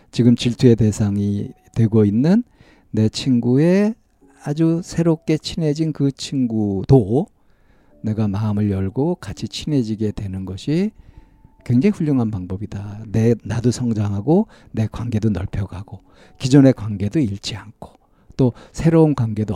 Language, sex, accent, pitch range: Korean, male, native, 105-140 Hz